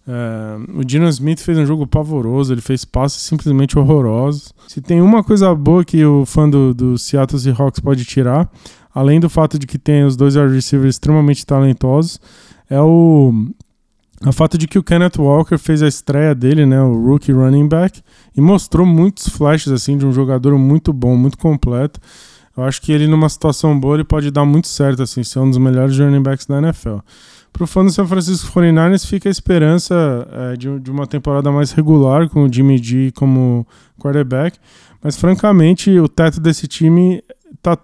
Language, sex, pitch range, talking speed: Portuguese, male, 135-170 Hz, 185 wpm